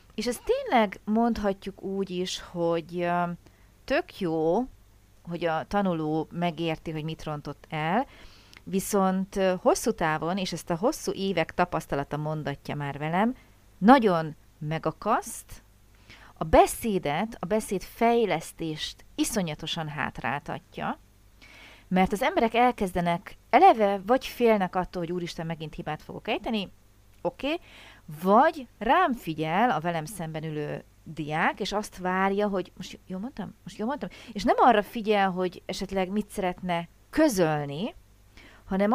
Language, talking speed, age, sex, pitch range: Hungarian, 125 wpm, 40-59, female, 160-225 Hz